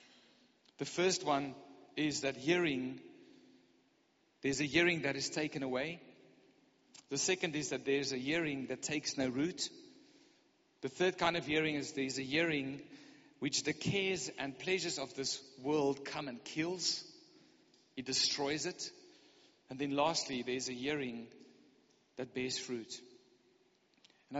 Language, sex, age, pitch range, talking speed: English, male, 50-69, 135-175 Hz, 140 wpm